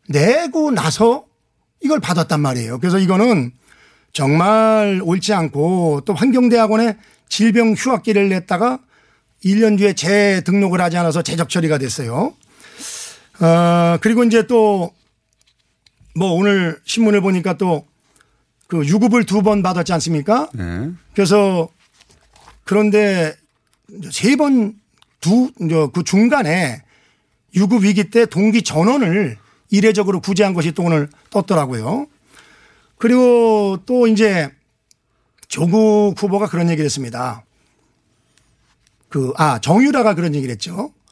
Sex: male